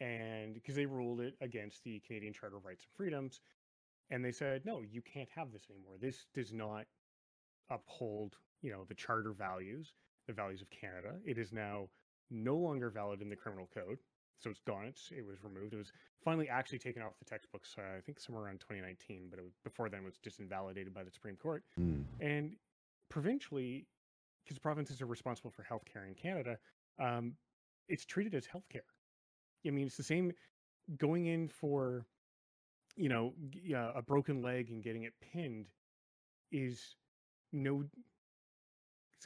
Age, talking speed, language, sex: 30-49, 170 wpm, English, male